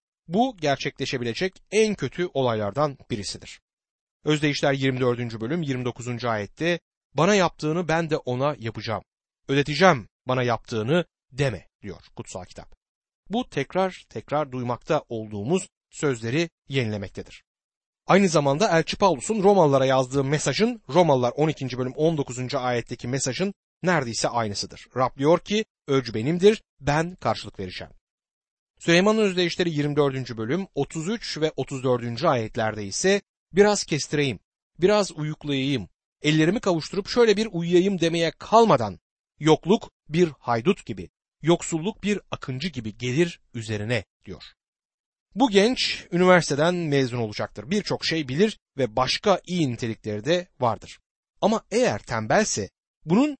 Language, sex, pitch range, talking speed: Turkish, male, 125-180 Hz, 115 wpm